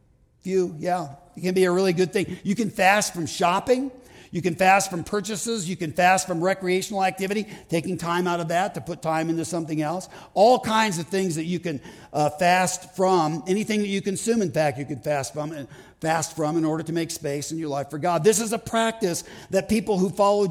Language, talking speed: English, 225 wpm